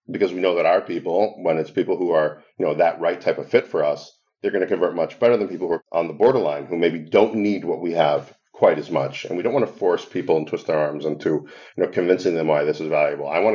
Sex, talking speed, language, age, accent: male, 290 wpm, English, 50-69, American